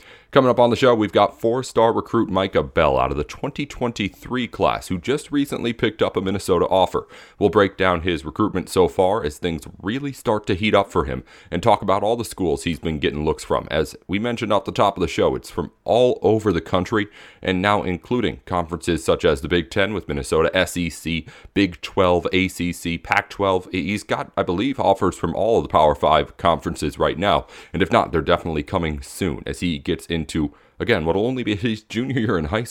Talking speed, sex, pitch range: 215 wpm, male, 85-115 Hz